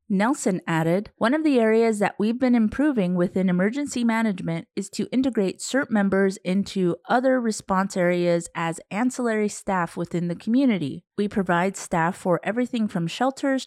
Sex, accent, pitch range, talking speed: female, American, 180-235 Hz, 155 wpm